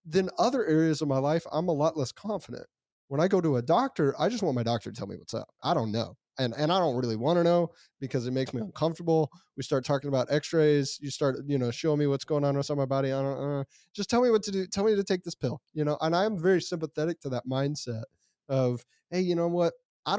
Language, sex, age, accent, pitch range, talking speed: English, male, 20-39, American, 130-175 Hz, 270 wpm